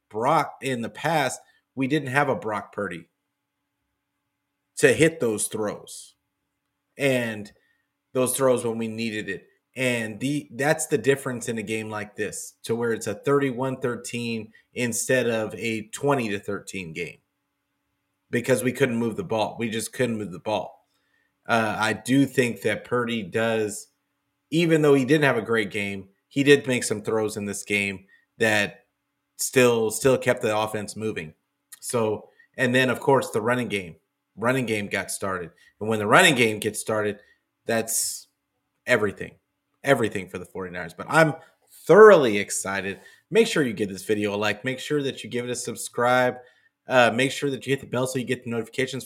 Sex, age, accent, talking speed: male, 30-49, American, 170 wpm